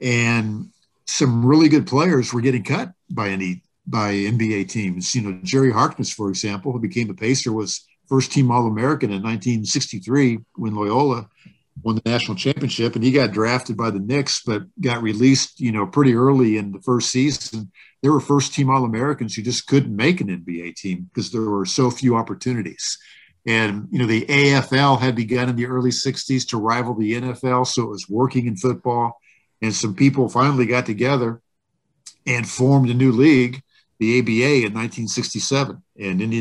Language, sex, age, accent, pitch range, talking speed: English, male, 50-69, American, 110-135 Hz, 175 wpm